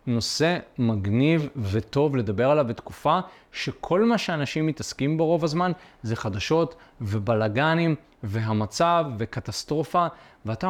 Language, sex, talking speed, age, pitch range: Hebrew, male, 105 wpm, 20-39, 115-170 Hz